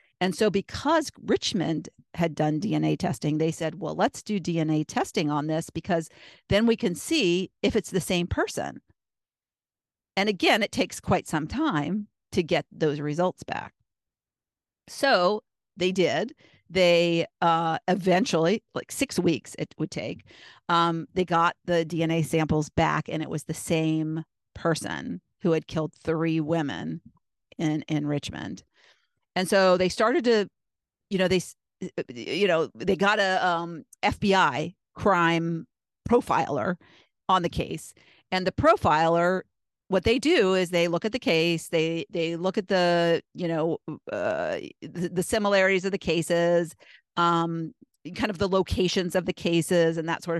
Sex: female